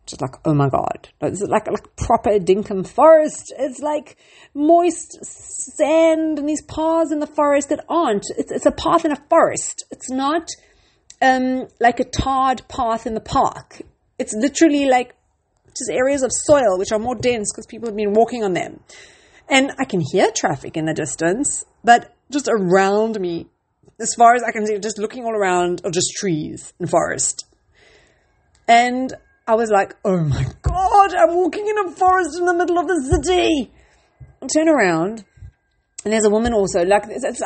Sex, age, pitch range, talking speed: female, 40-59, 195-300 Hz, 185 wpm